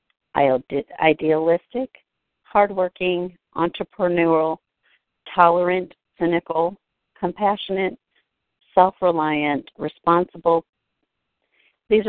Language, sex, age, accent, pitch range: English, female, 50-69, American, 150-180 Hz